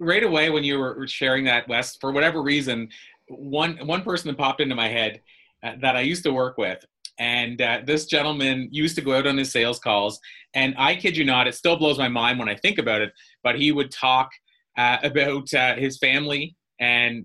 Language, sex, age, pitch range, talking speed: English, male, 30-49, 120-145 Hz, 220 wpm